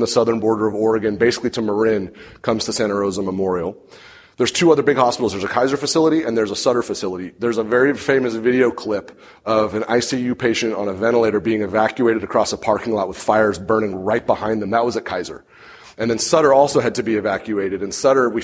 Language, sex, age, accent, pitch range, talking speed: English, male, 30-49, American, 110-130 Hz, 220 wpm